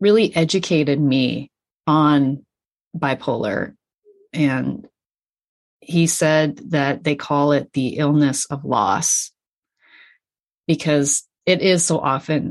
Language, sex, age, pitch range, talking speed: English, female, 30-49, 140-170 Hz, 100 wpm